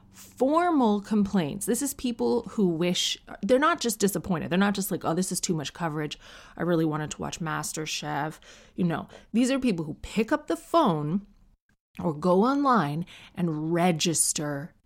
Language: English